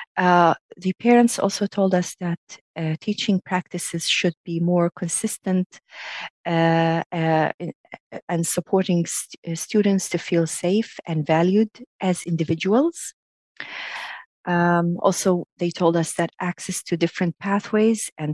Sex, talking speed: female, 130 wpm